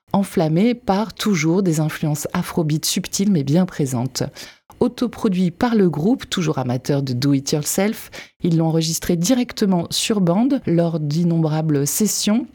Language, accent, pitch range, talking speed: French, French, 155-200 Hz, 140 wpm